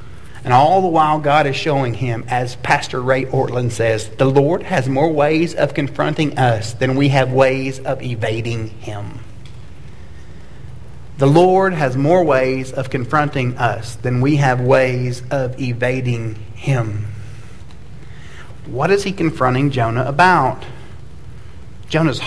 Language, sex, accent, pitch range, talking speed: English, male, American, 125-170 Hz, 135 wpm